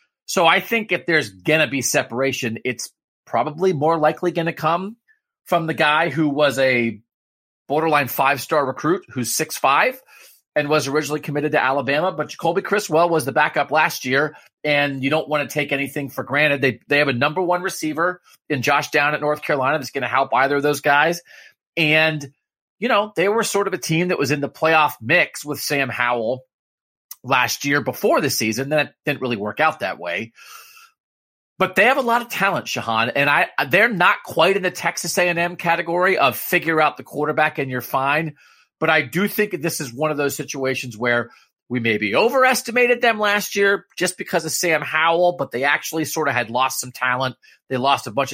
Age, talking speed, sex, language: 30-49, 200 wpm, male, English